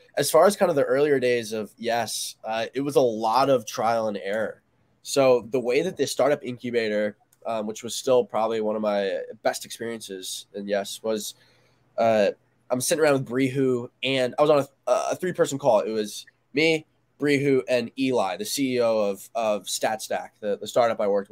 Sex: male